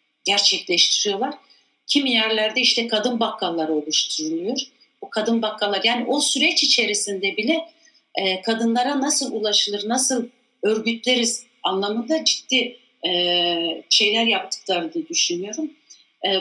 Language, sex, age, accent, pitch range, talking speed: Turkish, female, 60-79, native, 205-260 Hz, 100 wpm